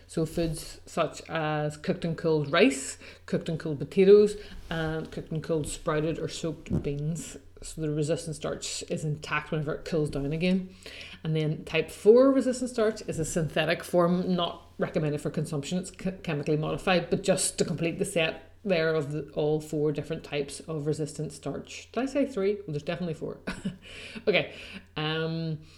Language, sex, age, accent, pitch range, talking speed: English, female, 30-49, Irish, 150-185 Hz, 170 wpm